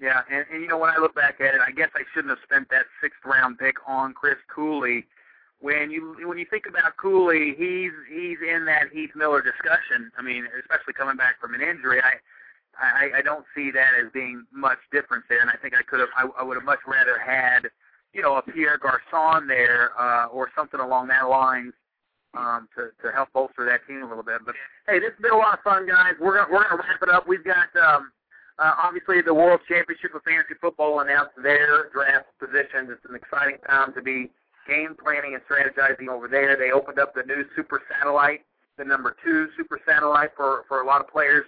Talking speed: 225 wpm